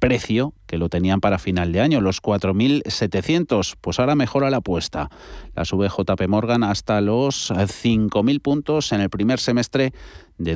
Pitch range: 90-120 Hz